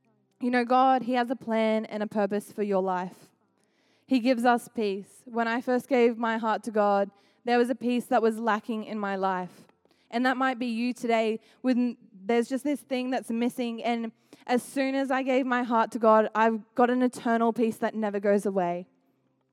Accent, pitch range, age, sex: Australian, 205-245 Hz, 10-29, female